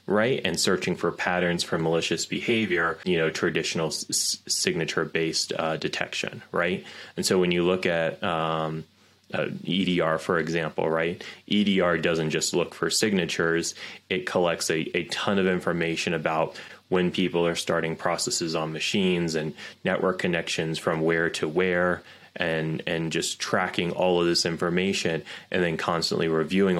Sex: male